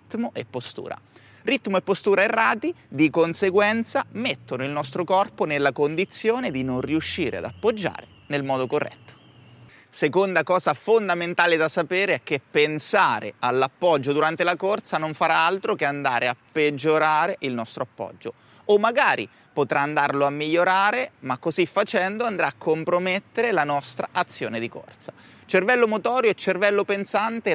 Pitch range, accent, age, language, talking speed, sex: 140-190 Hz, native, 30-49, Italian, 145 wpm, male